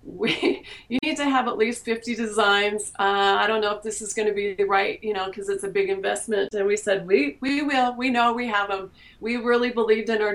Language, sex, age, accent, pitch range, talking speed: English, female, 30-49, American, 190-235 Hz, 255 wpm